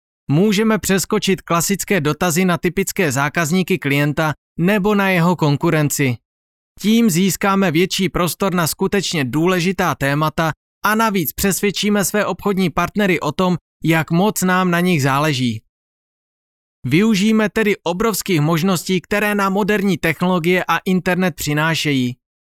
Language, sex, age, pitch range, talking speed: Czech, male, 30-49, 150-195 Hz, 120 wpm